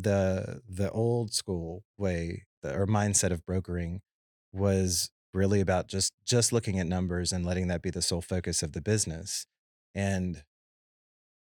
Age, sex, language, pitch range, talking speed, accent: 30-49, male, English, 85-105 Hz, 145 wpm, American